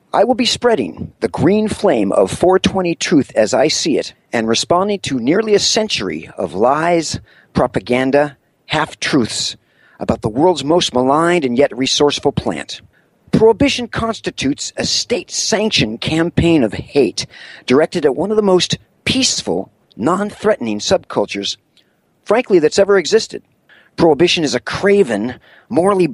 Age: 40-59